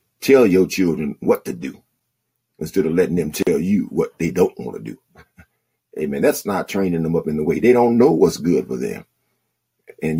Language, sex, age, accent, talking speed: English, male, 50-69, American, 205 wpm